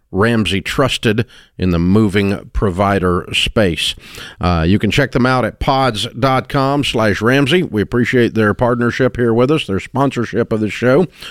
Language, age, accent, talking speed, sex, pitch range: English, 50-69, American, 155 wpm, male, 90-110 Hz